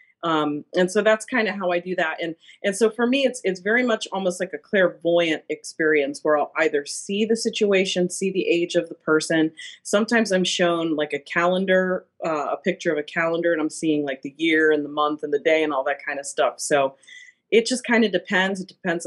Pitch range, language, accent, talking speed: 150-185 Hz, English, American, 235 wpm